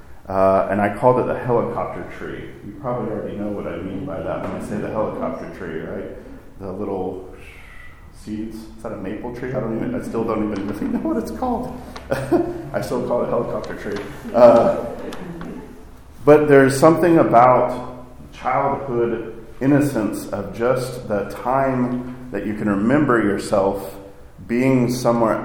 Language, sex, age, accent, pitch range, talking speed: English, male, 40-59, American, 100-125 Hz, 165 wpm